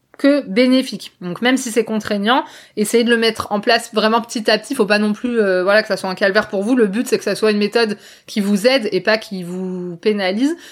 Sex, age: female, 20-39